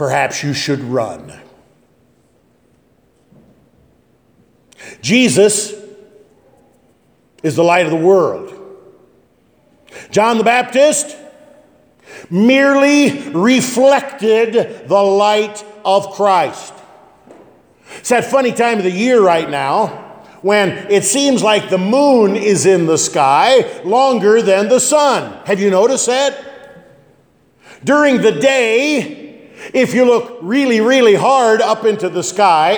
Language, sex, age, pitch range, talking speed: English, male, 50-69, 190-250 Hz, 110 wpm